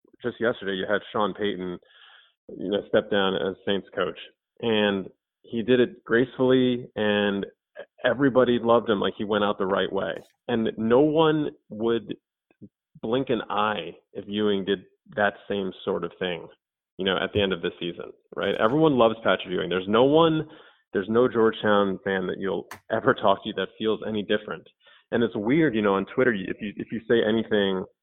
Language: English